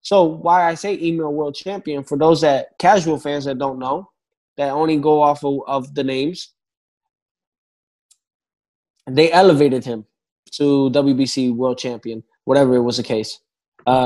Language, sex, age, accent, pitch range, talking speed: English, male, 20-39, American, 135-165 Hz, 155 wpm